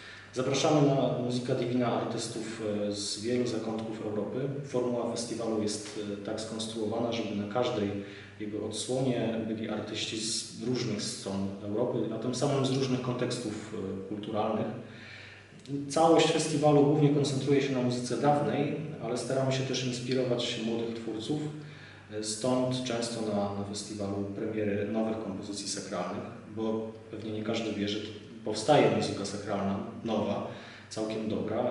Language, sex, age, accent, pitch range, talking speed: Polish, male, 30-49, native, 105-125 Hz, 125 wpm